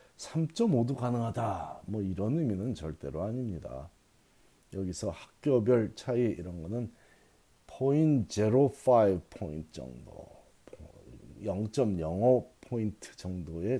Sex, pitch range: male, 95-125 Hz